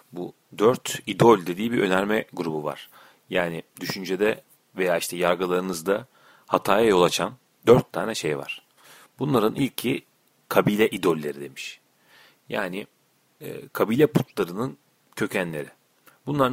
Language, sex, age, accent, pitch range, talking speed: Turkish, male, 40-59, native, 90-125 Hz, 115 wpm